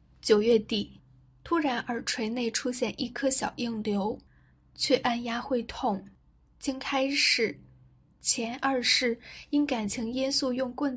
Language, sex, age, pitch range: Chinese, female, 10-29, 215-260 Hz